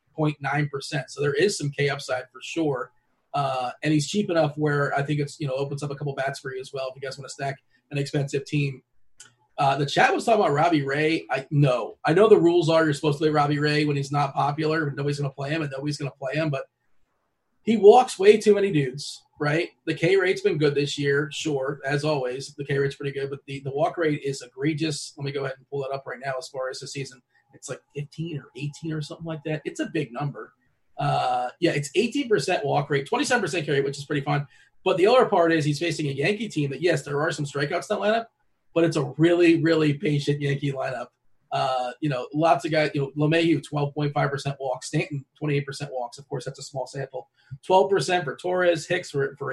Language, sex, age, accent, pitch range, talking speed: English, male, 30-49, American, 140-165 Hz, 245 wpm